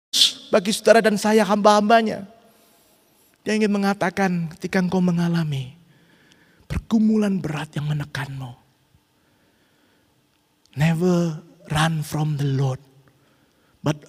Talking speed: 90 wpm